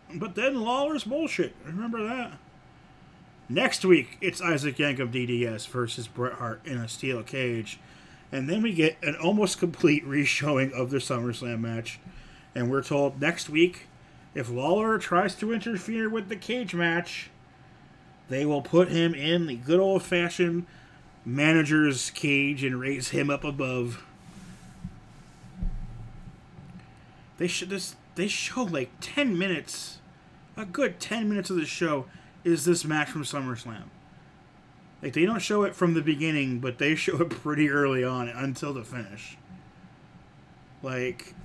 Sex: male